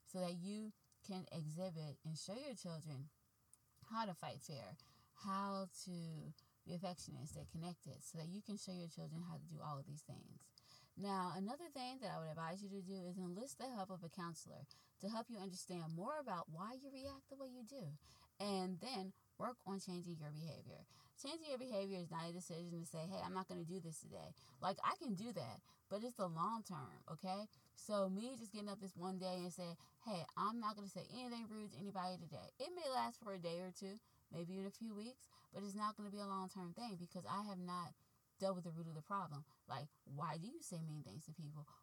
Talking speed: 230 wpm